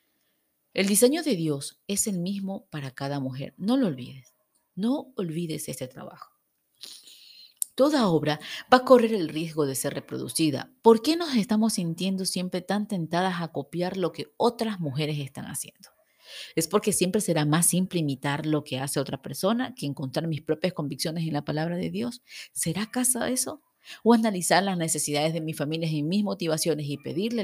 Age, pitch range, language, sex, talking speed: 40-59, 150-195 Hz, Spanish, female, 175 wpm